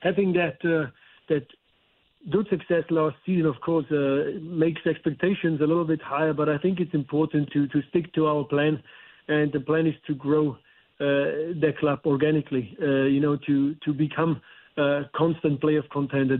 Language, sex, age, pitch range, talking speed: English, male, 50-69, 145-165 Hz, 180 wpm